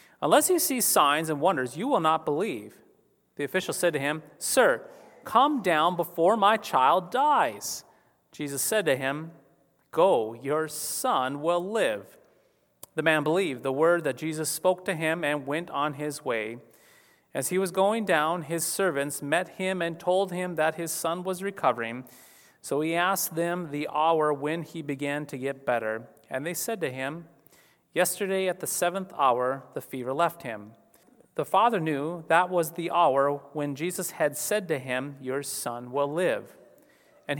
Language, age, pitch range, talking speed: English, 30-49, 130-180 Hz, 170 wpm